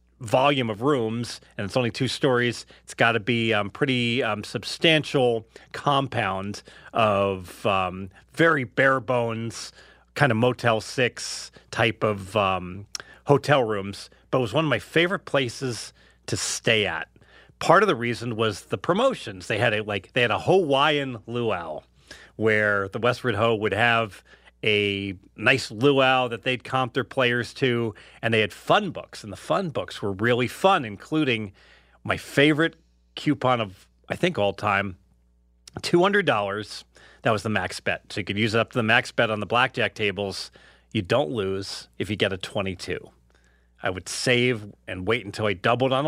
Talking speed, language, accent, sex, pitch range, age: 170 wpm, English, American, male, 100-130 Hz, 40-59